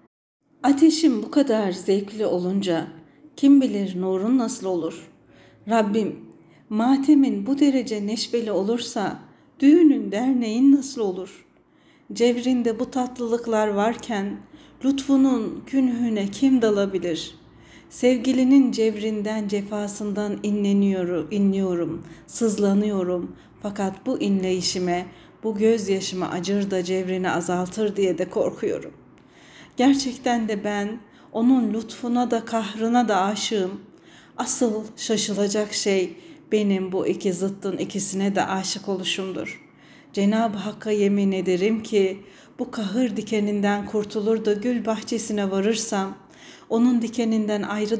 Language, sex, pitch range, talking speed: Turkish, female, 195-235 Hz, 100 wpm